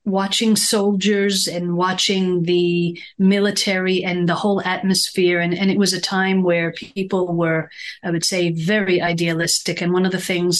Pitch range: 175-200 Hz